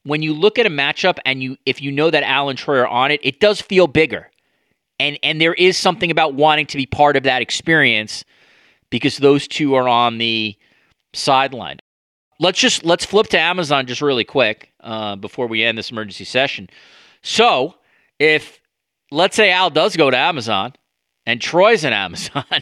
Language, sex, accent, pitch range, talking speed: English, male, American, 115-155 Hz, 190 wpm